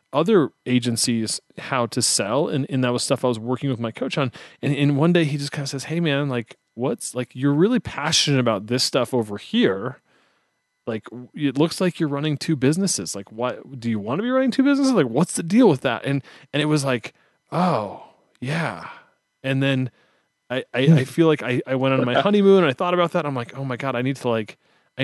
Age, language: 30-49, English